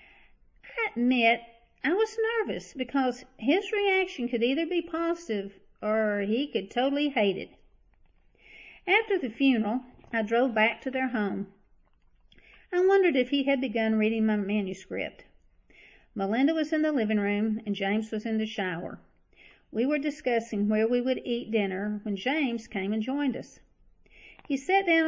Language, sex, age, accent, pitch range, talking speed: English, female, 50-69, American, 210-275 Hz, 155 wpm